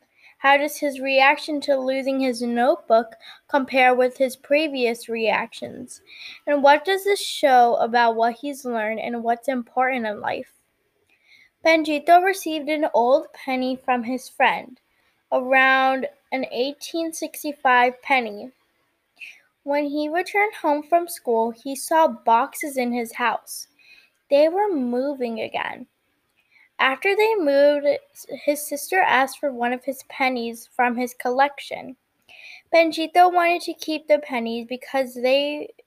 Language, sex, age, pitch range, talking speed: English, female, 10-29, 255-325 Hz, 130 wpm